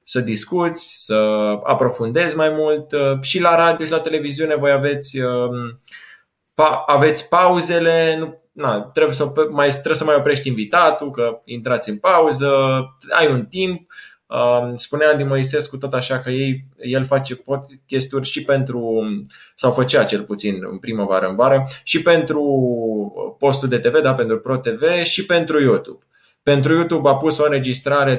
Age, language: 20-39, Romanian